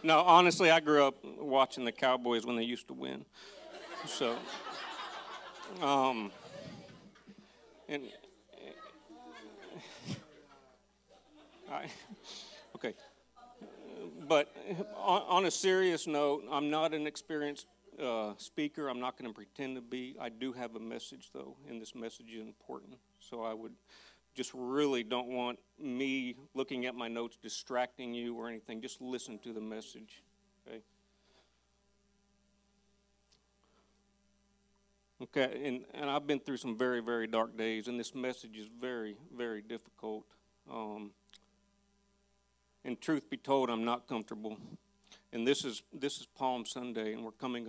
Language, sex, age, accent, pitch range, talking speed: English, male, 40-59, American, 115-180 Hz, 130 wpm